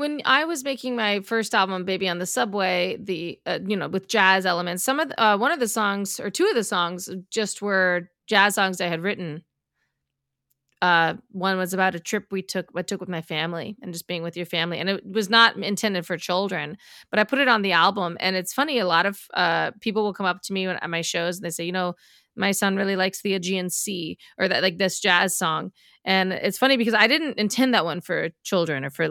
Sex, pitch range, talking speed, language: female, 175-210 Hz, 245 wpm, English